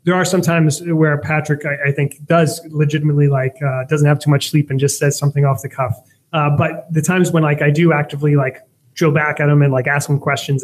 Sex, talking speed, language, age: male, 250 wpm, English, 20-39